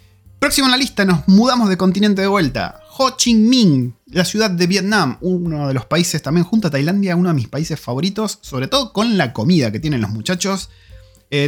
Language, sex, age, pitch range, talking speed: Spanish, male, 30-49, 140-185 Hz, 210 wpm